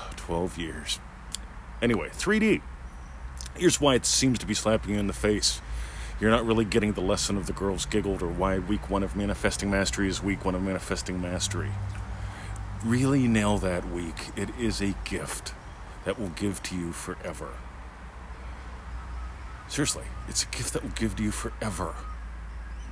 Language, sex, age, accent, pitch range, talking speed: English, male, 40-59, American, 80-110 Hz, 160 wpm